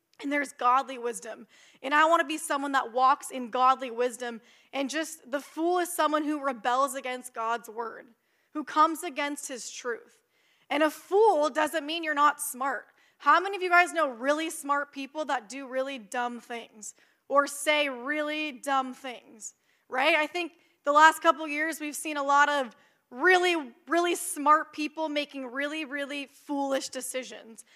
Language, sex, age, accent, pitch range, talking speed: English, female, 20-39, American, 260-310 Hz, 170 wpm